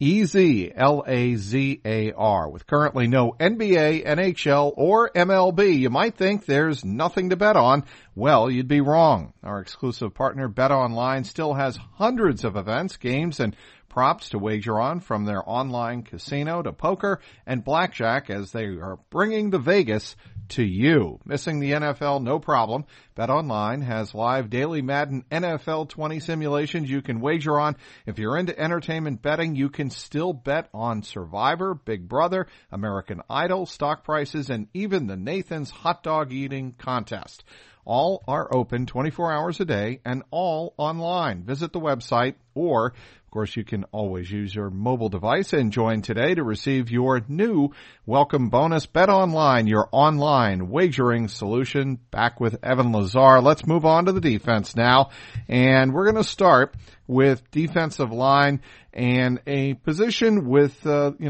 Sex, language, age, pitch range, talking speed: male, English, 50-69, 115-155 Hz, 155 wpm